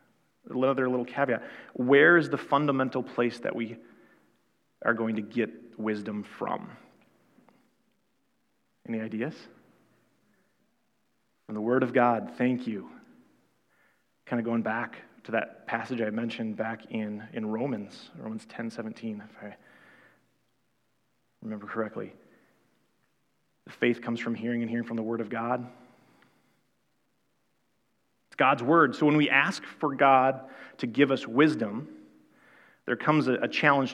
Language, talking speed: English, 130 wpm